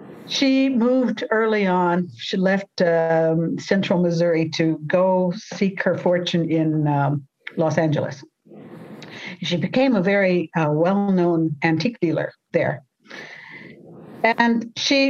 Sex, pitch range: female, 165-215 Hz